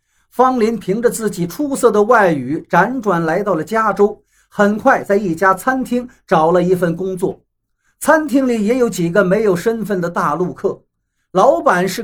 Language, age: Chinese, 50-69